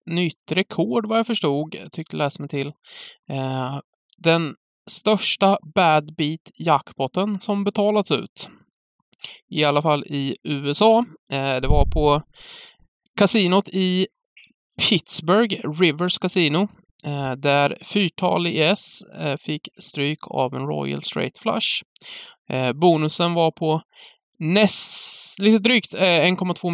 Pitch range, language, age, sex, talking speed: 140-185 Hz, English, 20-39, male, 105 wpm